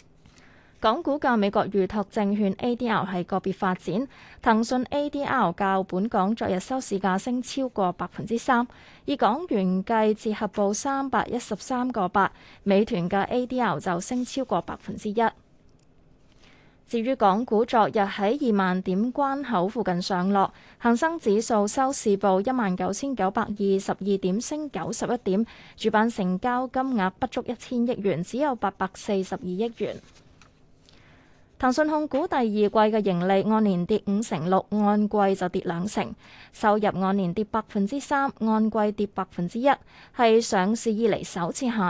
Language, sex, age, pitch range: Chinese, female, 20-39, 190-240 Hz